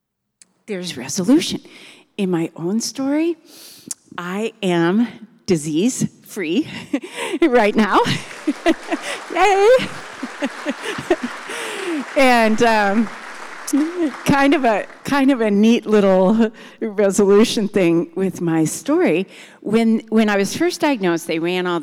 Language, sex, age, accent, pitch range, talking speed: English, female, 40-59, American, 175-280 Hz, 100 wpm